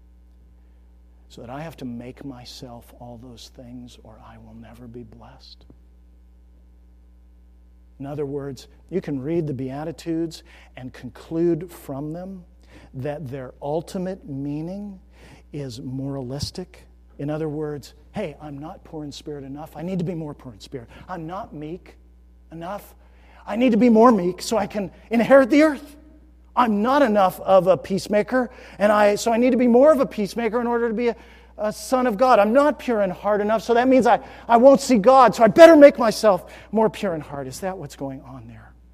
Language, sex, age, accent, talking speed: English, male, 50-69, American, 190 wpm